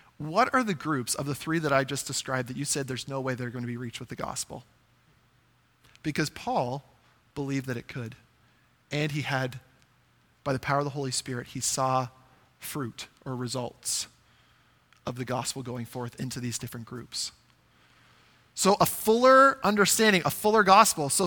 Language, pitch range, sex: English, 130-165 Hz, male